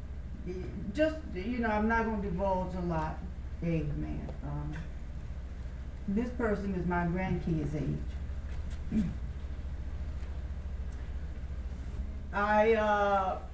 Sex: female